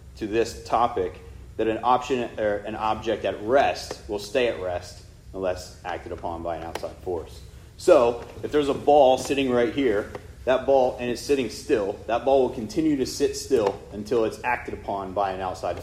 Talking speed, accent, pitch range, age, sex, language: 190 wpm, American, 95-125 Hz, 30-49, male, English